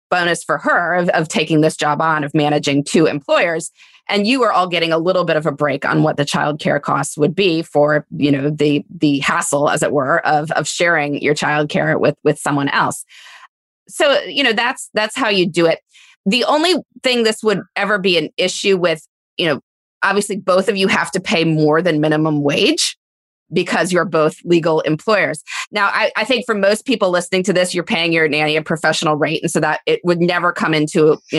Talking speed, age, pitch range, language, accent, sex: 215 wpm, 20-39, 155-195 Hz, English, American, female